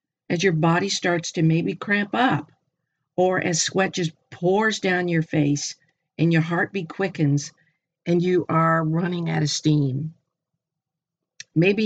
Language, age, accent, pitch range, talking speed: English, 50-69, American, 155-185 Hz, 140 wpm